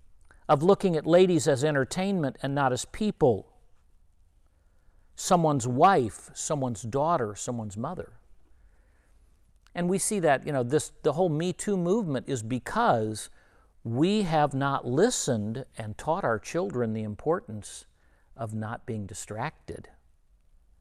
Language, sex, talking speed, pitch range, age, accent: English, male, 125 wpm, 110-180 Hz, 50-69, American